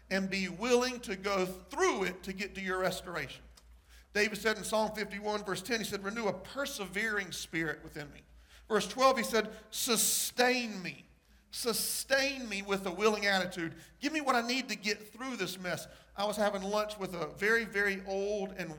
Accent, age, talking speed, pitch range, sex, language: American, 40-59, 190 wpm, 165-220 Hz, male, English